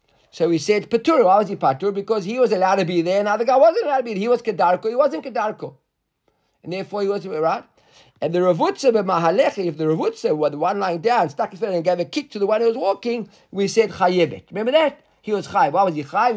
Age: 50-69